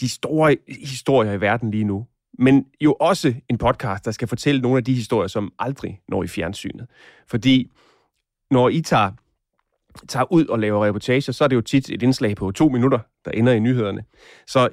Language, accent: Danish, native